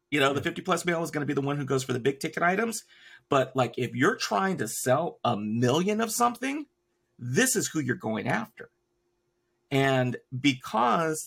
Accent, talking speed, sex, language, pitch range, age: American, 195 wpm, male, English, 120-145 Hz, 40-59